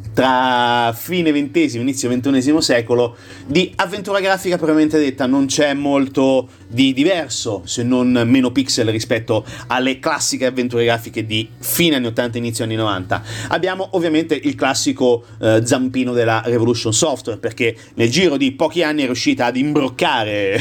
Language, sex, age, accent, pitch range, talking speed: Italian, male, 30-49, native, 120-160 Hz, 150 wpm